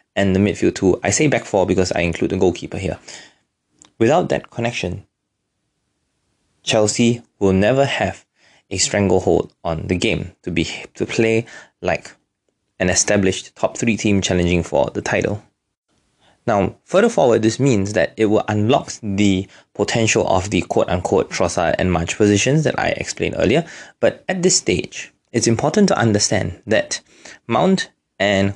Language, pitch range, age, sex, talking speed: English, 100-125 Hz, 20-39, male, 155 wpm